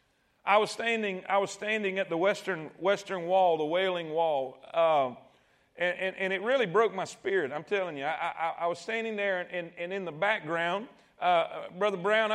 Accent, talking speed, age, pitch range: American, 195 wpm, 40-59, 185-220 Hz